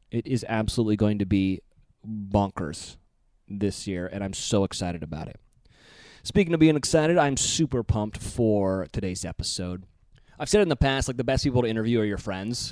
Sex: male